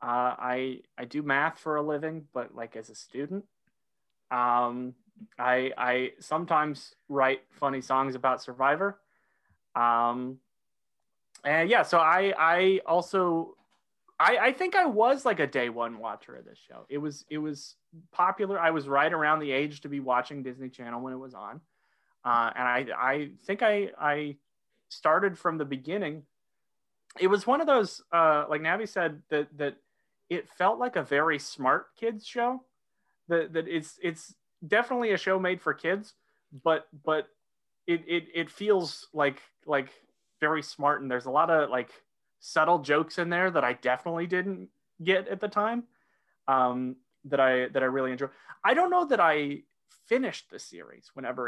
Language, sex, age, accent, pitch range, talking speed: English, male, 30-49, American, 130-185 Hz, 170 wpm